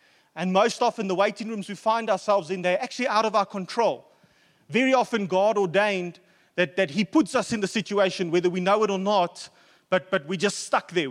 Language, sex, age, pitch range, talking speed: English, male, 30-49, 175-225 Hz, 215 wpm